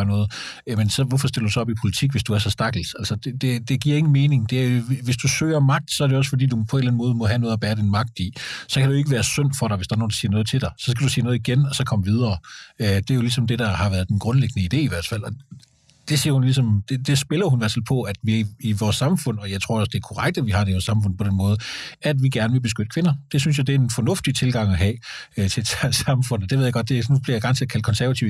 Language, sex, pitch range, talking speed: Danish, male, 110-140 Hz, 320 wpm